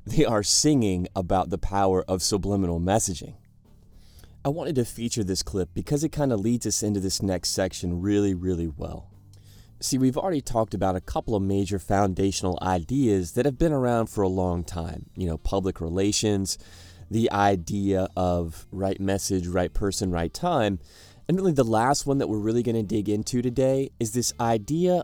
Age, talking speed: 30-49, 180 wpm